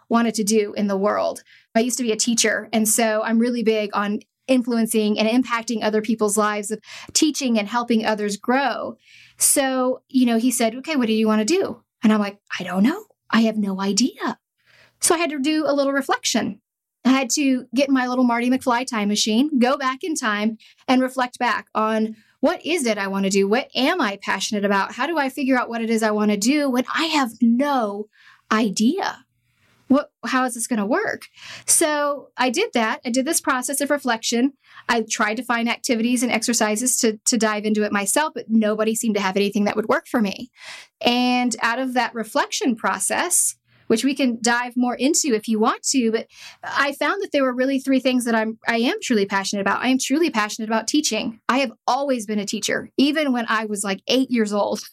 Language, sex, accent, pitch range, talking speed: English, female, American, 215-265 Hz, 215 wpm